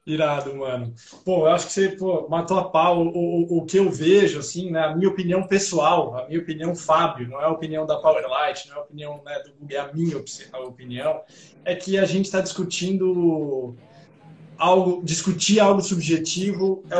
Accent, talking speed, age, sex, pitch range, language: Brazilian, 195 wpm, 20-39, male, 160-190 Hz, Portuguese